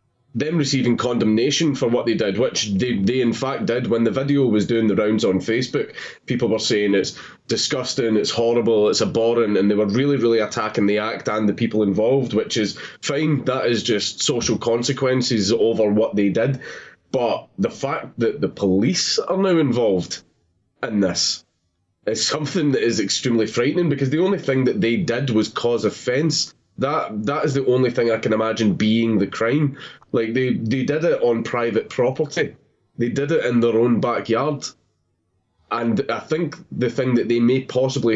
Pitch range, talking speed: 110-140 Hz, 185 wpm